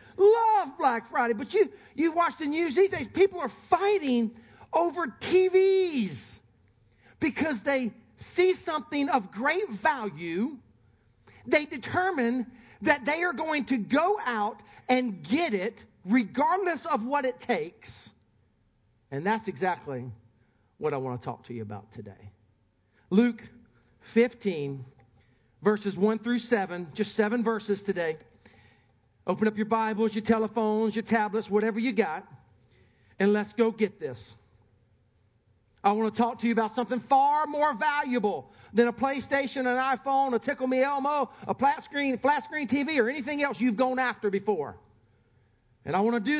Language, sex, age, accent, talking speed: English, male, 50-69, American, 150 wpm